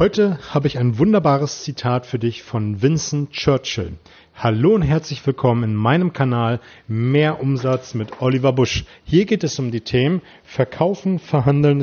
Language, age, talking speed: German, 40-59, 155 wpm